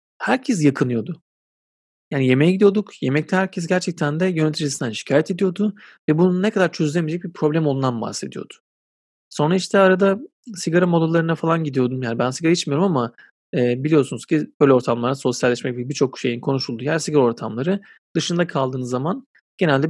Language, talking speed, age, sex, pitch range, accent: Turkish, 150 wpm, 40-59, male, 130-185 Hz, native